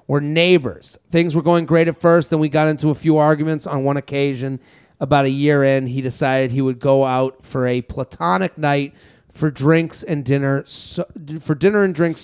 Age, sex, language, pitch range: 30-49, male, English, 130-150 Hz